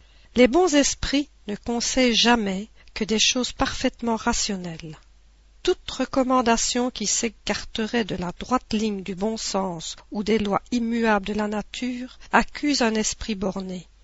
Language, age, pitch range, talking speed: French, 50-69, 200-235 Hz, 140 wpm